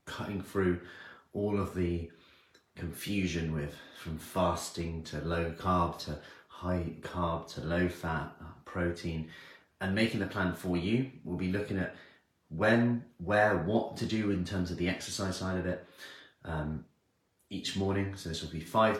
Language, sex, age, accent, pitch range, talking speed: English, male, 30-49, British, 85-100 Hz, 160 wpm